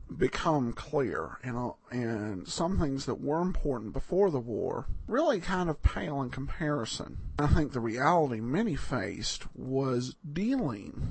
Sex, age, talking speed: male, 50-69, 135 wpm